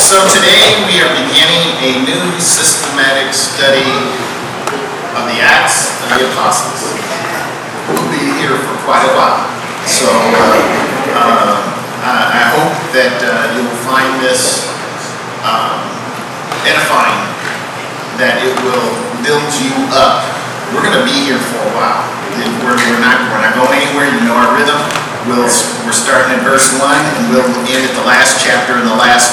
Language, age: English, 50-69